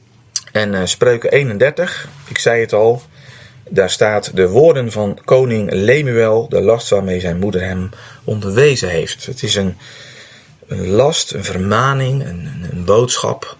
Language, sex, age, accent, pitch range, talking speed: Dutch, male, 40-59, Dutch, 100-135 Hz, 145 wpm